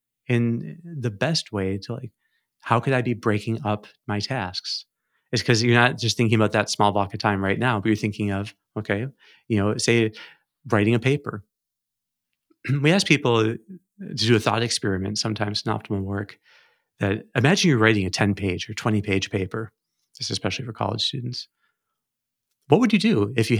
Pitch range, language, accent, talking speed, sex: 105-125 Hz, English, American, 190 wpm, male